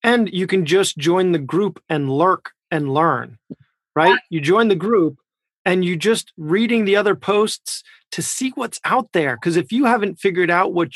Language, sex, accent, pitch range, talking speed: English, male, American, 160-205 Hz, 190 wpm